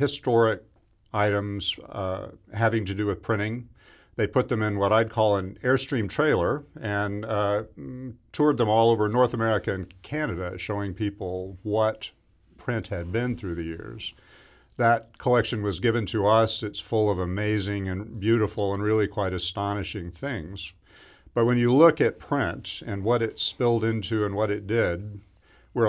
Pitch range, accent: 95-110 Hz, American